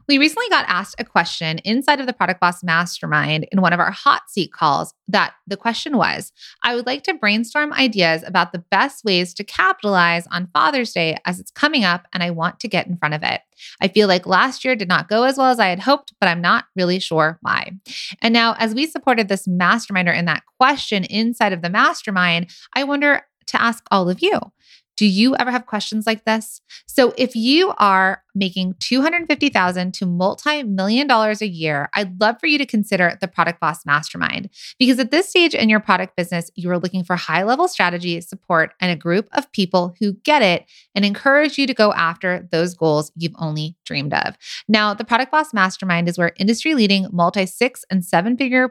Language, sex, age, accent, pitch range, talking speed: English, female, 20-39, American, 180-245 Hz, 205 wpm